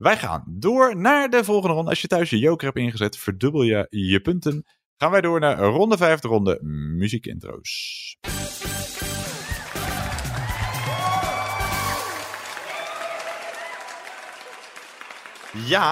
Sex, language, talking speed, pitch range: male, Dutch, 100 wpm, 100-150 Hz